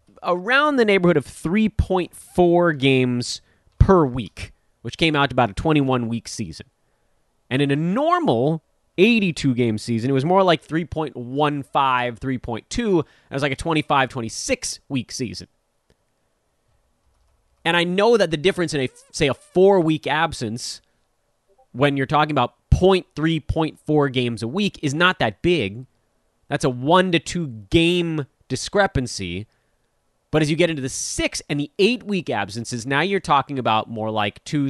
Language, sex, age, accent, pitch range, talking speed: English, male, 30-49, American, 120-170 Hz, 145 wpm